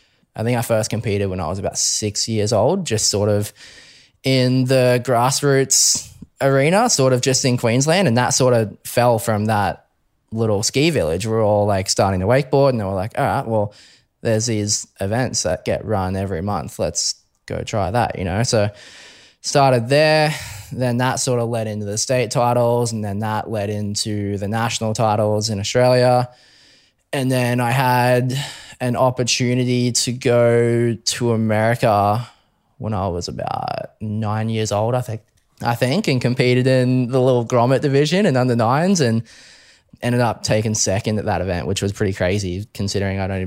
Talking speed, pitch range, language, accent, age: 180 wpm, 105-125 Hz, English, Australian, 20-39